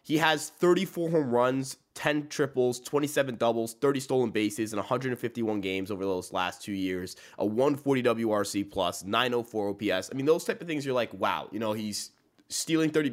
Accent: American